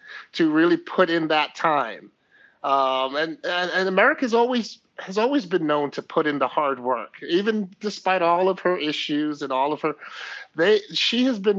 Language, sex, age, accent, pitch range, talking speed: English, male, 30-49, American, 140-200 Hz, 185 wpm